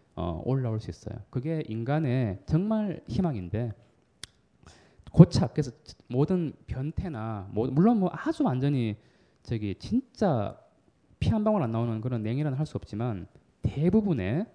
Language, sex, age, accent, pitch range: Korean, male, 20-39, native, 105-155 Hz